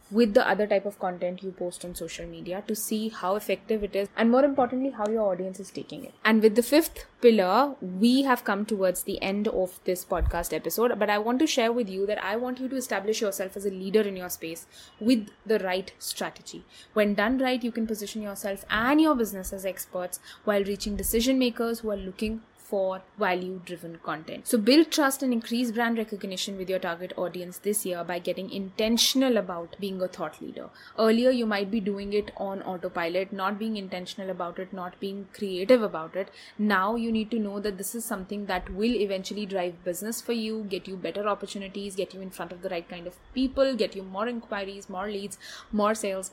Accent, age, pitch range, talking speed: Indian, 20-39, 185-230 Hz, 210 wpm